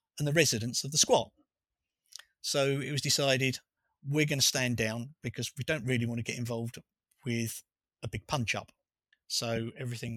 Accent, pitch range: British, 115-135 Hz